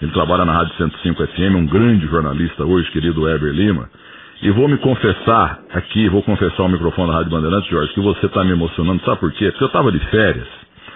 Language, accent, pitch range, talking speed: Portuguese, Brazilian, 85-125 Hz, 215 wpm